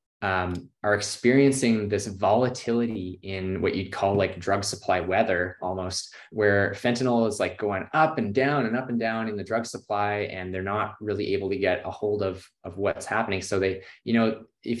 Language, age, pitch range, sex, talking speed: English, 20-39, 95-115 Hz, male, 195 wpm